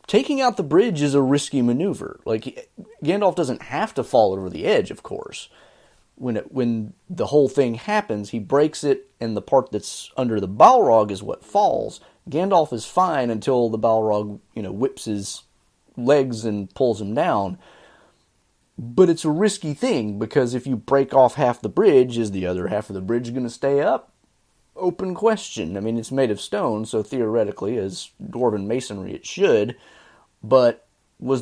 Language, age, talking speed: English, 30-49, 180 wpm